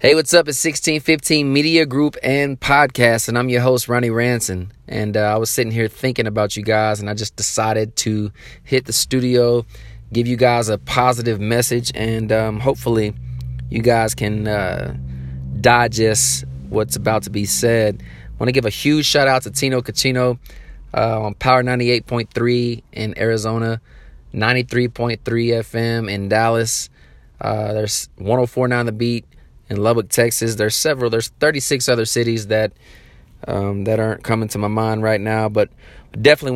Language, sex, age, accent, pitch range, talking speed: English, male, 20-39, American, 105-125 Hz, 160 wpm